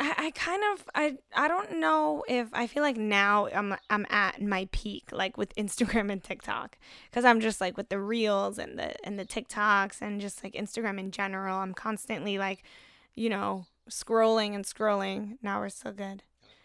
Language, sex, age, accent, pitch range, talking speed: English, female, 10-29, American, 200-230 Hz, 185 wpm